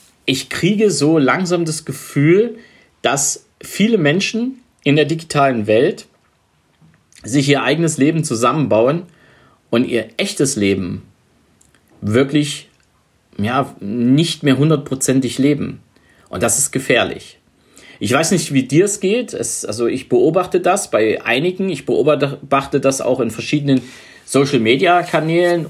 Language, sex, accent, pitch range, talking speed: German, male, German, 130-165 Hz, 120 wpm